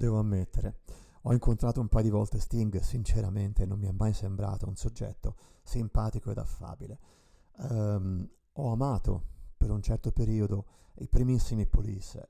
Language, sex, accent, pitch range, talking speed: Italian, male, native, 100-115 Hz, 140 wpm